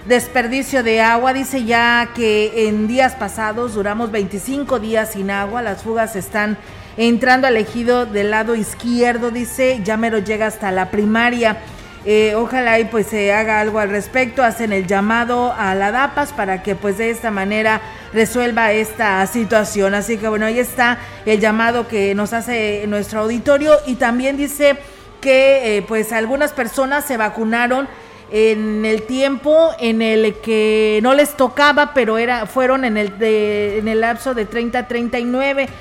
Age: 40-59